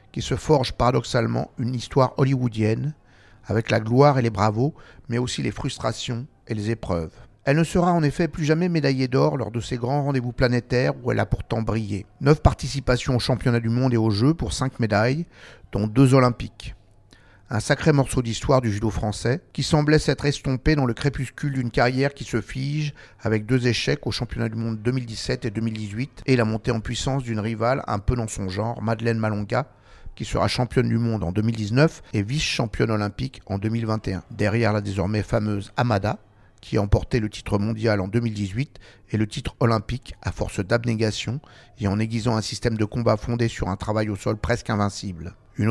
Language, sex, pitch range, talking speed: French, male, 105-130 Hz, 190 wpm